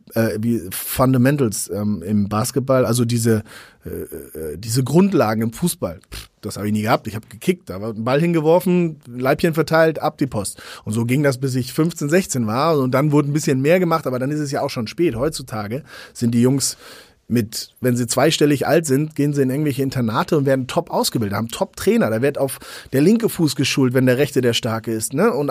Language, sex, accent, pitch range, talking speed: German, male, German, 115-155 Hz, 220 wpm